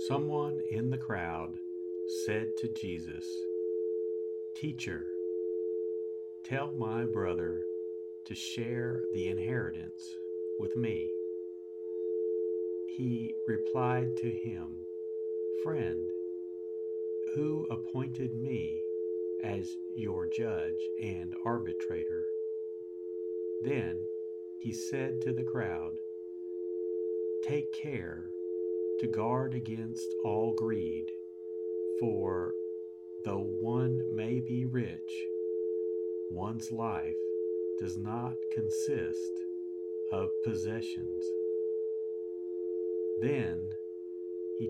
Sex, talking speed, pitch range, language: male, 80 wpm, 90-110 Hz, English